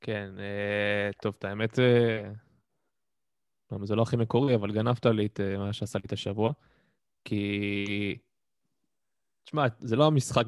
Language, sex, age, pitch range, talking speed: Hebrew, male, 20-39, 100-115 Hz, 120 wpm